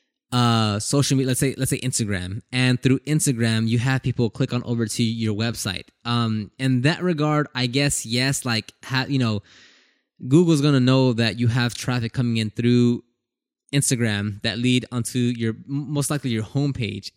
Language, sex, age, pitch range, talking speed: English, male, 20-39, 115-135 Hz, 180 wpm